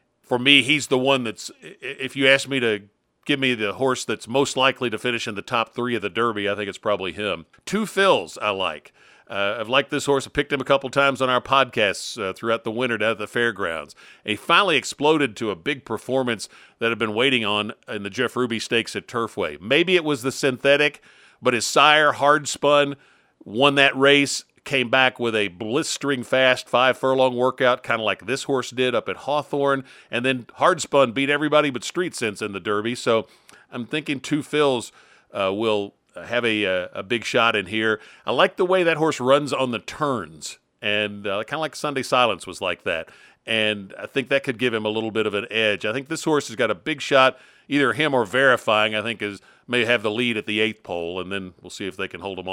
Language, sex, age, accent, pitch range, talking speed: English, male, 50-69, American, 110-140 Hz, 225 wpm